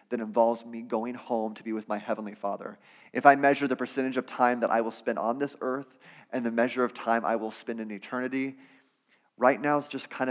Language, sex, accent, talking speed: English, male, American, 235 wpm